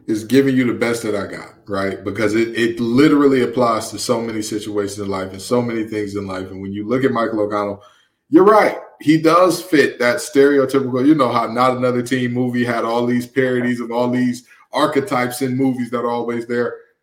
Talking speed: 215 wpm